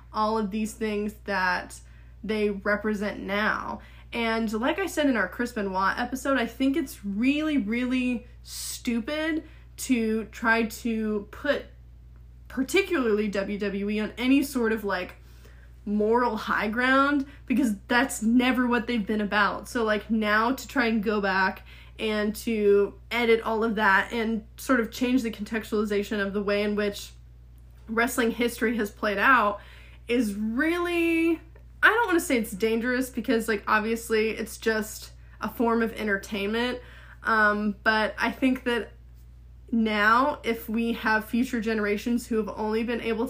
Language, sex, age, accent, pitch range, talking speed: English, female, 20-39, American, 210-250 Hz, 150 wpm